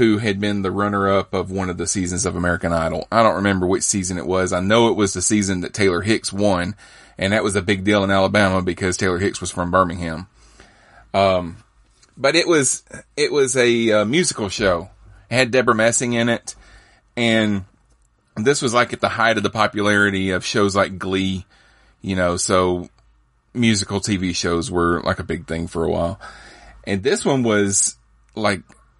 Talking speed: 190 wpm